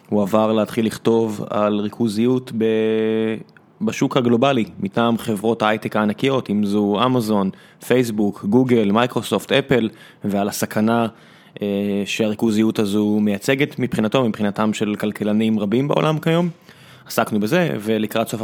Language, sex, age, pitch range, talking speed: Hebrew, male, 20-39, 110-135 Hz, 120 wpm